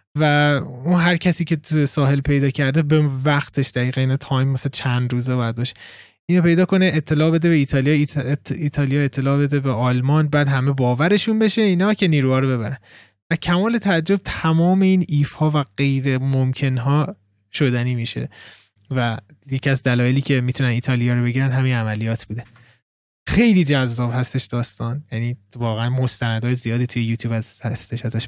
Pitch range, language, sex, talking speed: 120-155 Hz, Persian, male, 165 wpm